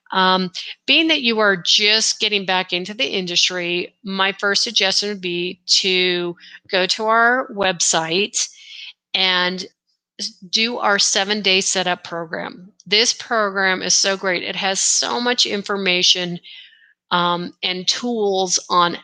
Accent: American